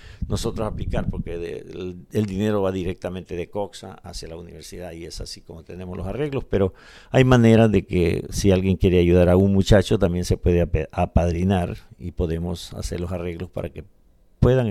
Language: Spanish